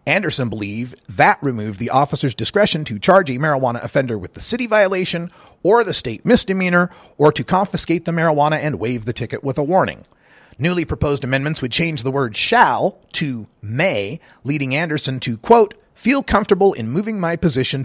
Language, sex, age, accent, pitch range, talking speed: English, male, 40-59, American, 130-180 Hz, 175 wpm